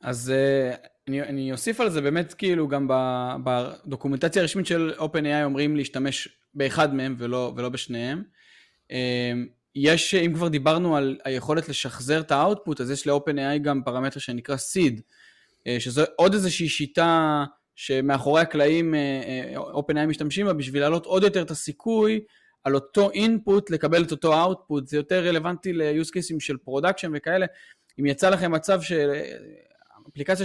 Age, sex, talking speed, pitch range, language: 20-39, male, 140 wpm, 135-175 Hz, Hebrew